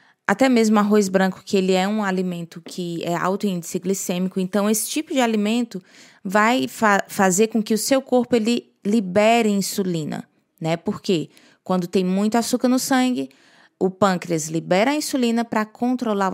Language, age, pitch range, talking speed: Portuguese, 20-39, 190-235 Hz, 160 wpm